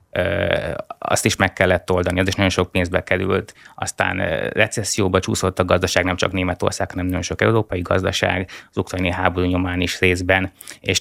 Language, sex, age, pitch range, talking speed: Hungarian, male, 20-39, 90-110 Hz, 170 wpm